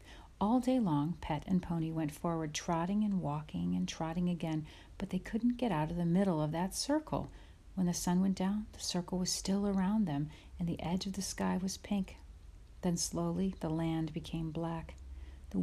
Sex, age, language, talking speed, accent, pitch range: female, 40-59, English, 195 wpm, American, 155-185 Hz